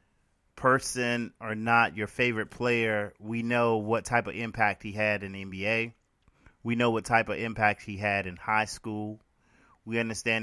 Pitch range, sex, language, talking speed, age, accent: 100-115 Hz, male, English, 175 wpm, 30-49, American